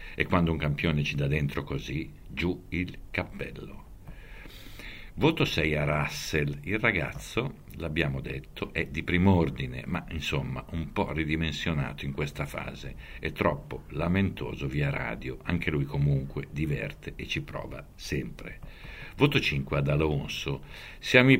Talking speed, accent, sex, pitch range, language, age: 140 wpm, native, male, 70-95 Hz, Italian, 60-79